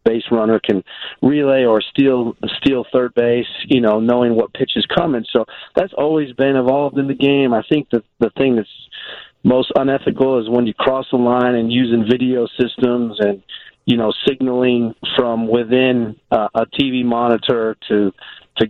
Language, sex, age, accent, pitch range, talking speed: English, male, 40-59, American, 115-125 Hz, 175 wpm